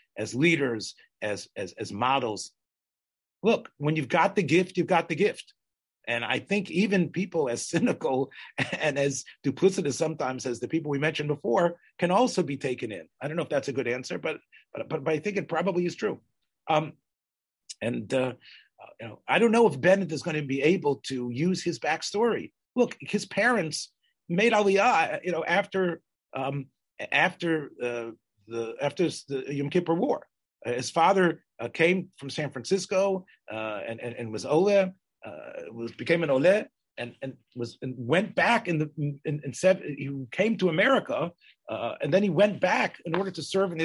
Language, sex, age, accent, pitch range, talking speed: English, male, 40-59, American, 135-195 Hz, 185 wpm